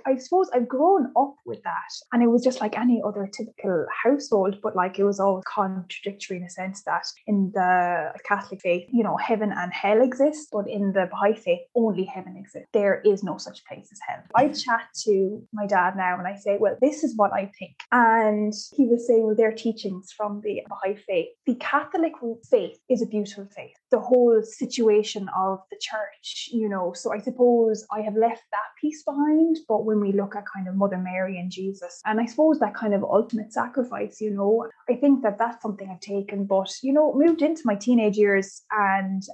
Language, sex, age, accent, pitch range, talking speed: English, female, 10-29, Irish, 200-260 Hz, 210 wpm